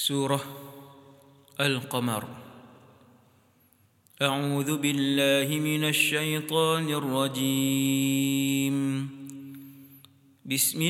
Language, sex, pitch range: English, male, 135-160 Hz